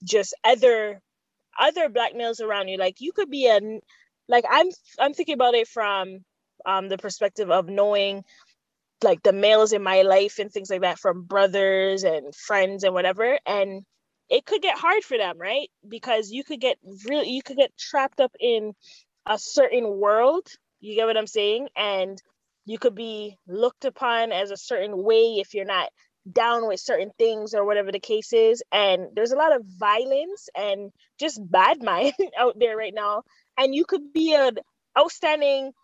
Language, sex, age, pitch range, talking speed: English, female, 20-39, 200-270 Hz, 180 wpm